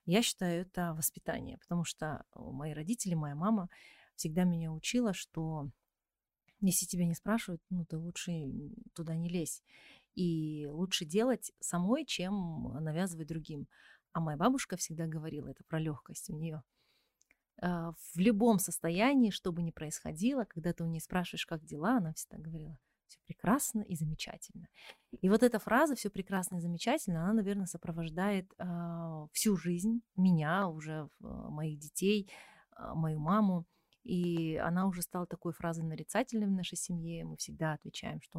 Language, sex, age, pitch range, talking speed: Russian, female, 30-49, 165-215 Hz, 155 wpm